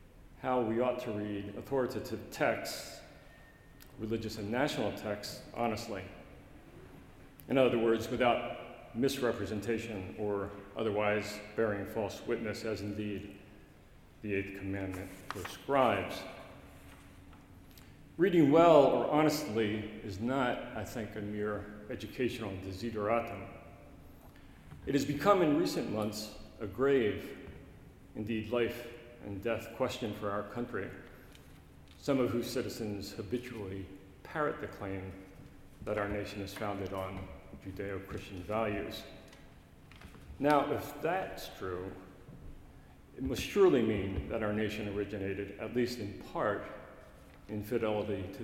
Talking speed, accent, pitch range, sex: 115 wpm, American, 100-120 Hz, male